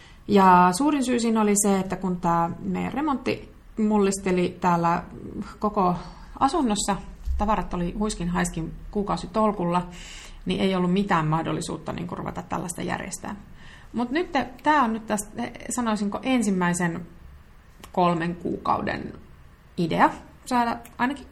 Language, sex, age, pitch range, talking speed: Finnish, female, 30-49, 175-220 Hz, 120 wpm